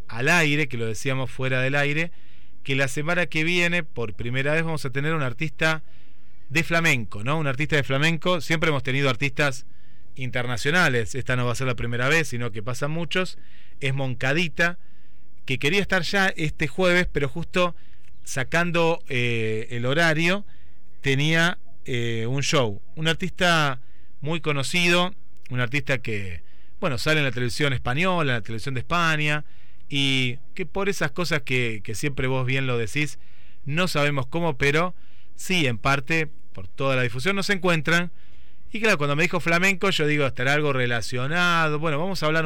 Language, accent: Spanish, Argentinian